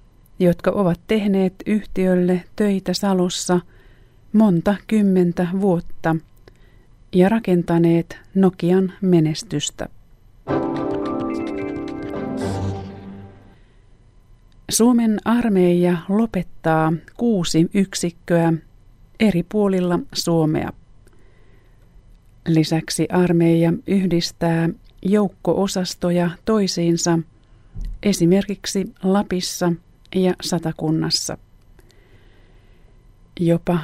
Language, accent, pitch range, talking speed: Finnish, native, 125-190 Hz, 50 wpm